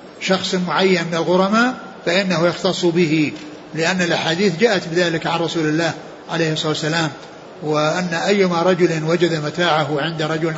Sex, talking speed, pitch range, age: male, 135 wpm, 160-190 Hz, 60-79